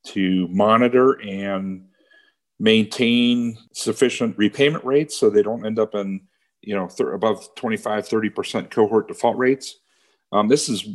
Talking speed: 135 wpm